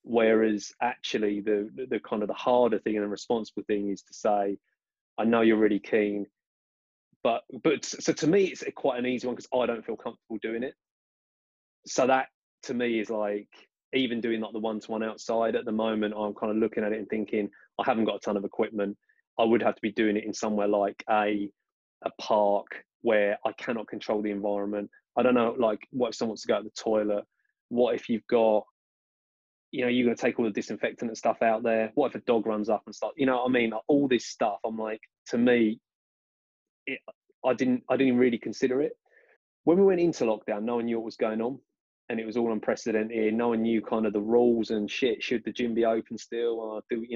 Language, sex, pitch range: English, male, 105-125 Hz